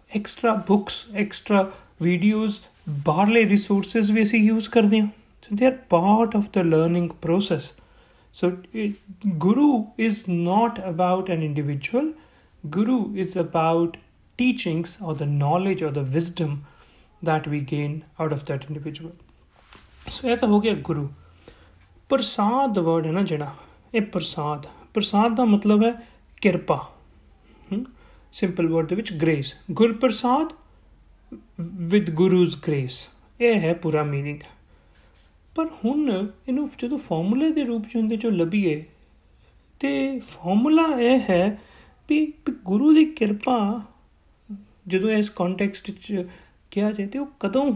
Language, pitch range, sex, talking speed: Punjabi, 170-230 Hz, male, 125 wpm